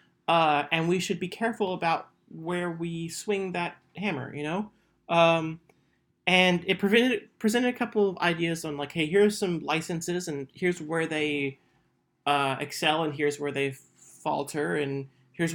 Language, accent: English, American